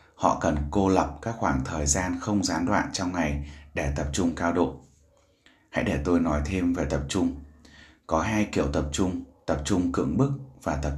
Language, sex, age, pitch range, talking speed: Vietnamese, male, 20-39, 75-100 Hz, 200 wpm